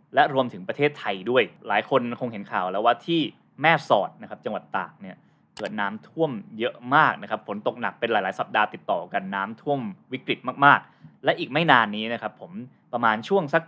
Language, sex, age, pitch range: Thai, male, 20-39, 115-160 Hz